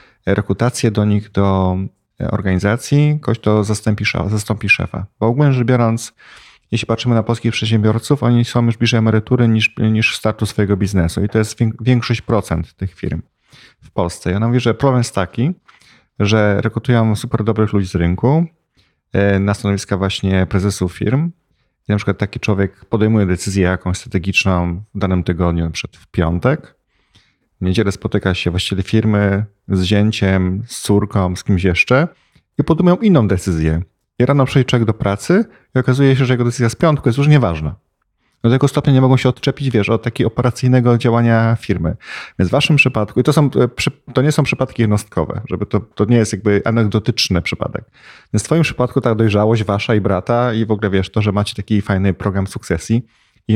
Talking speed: 175 wpm